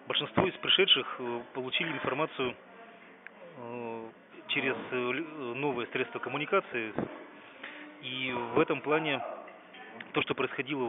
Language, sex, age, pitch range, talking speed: Russian, male, 30-49, 115-140 Hz, 90 wpm